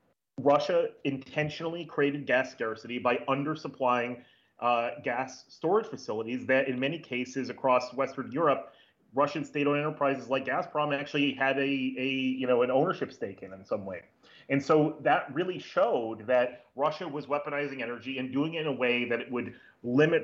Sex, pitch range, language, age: male, 125-150 Hz, English, 30-49